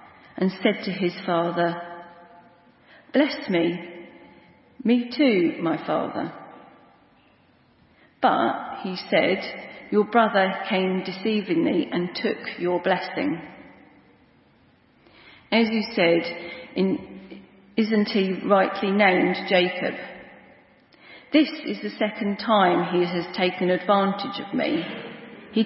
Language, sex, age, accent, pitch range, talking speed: English, female, 40-59, British, 180-245 Hz, 100 wpm